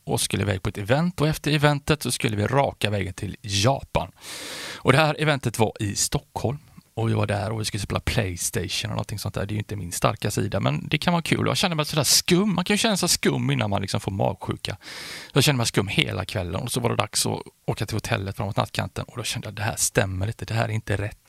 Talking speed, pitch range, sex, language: 270 wpm, 105-145 Hz, male, Swedish